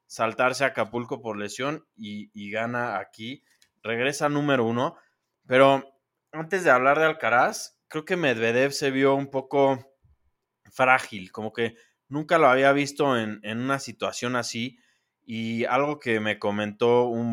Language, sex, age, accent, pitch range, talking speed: Spanish, male, 20-39, Mexican, 110-130 Hz, 150 wpm